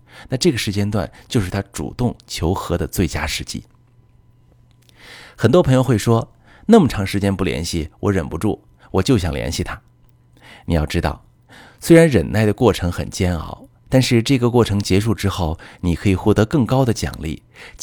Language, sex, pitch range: Chinese, male, 85-120 Hz